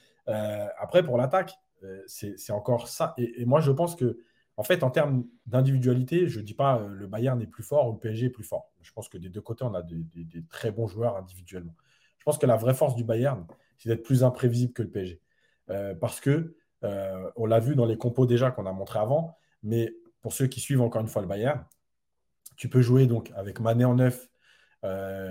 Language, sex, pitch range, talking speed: French, male, 110-135 Hz, 235 wpm